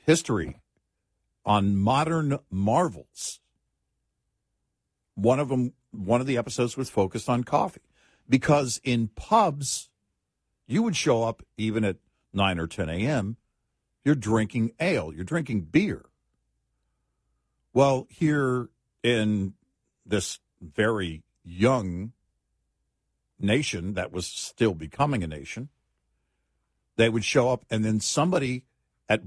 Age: 60-79